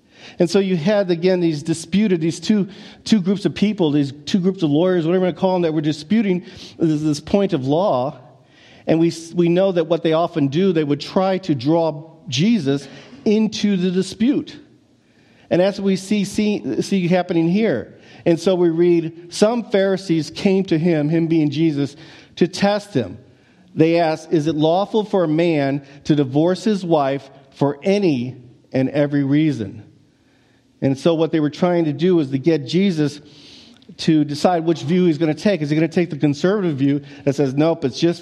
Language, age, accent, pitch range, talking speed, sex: English, 50-69, American, 145-185 Hz, 195 wpm, male